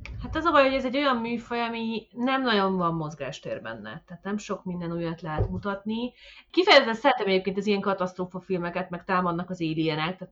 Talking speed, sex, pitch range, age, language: 200 wpm, female, 170-215 Hz, 30-49, Hungarian